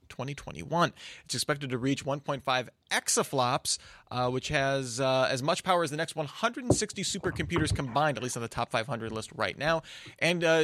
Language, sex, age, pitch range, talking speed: English, male, 30-49, 120-150 Hz, 175 wpm